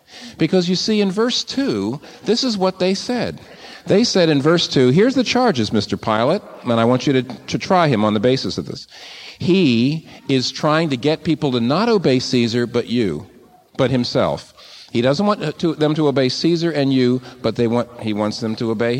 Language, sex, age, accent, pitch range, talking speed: English, male, 50-69, American, 125-180 Hz, 210 wpm